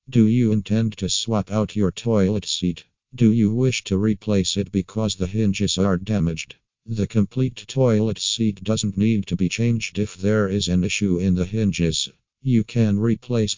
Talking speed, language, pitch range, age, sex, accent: 175 wpm, English, 95-110 Hz, 50-69, male, American